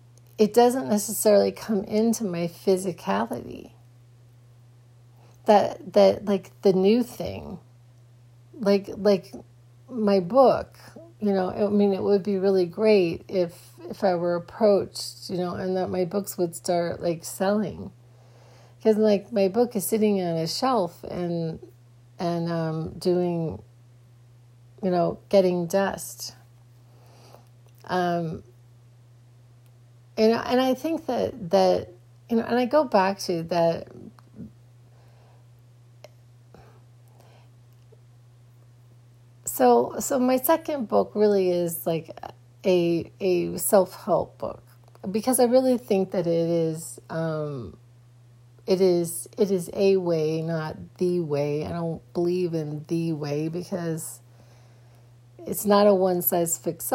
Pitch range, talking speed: 120-195 Hz, 120 wpm